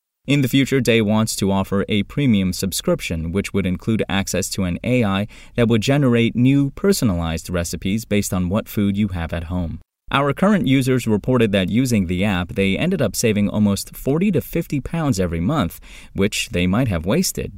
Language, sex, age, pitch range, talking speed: English, male, 30-49, 90-125 Hz, 190 wpm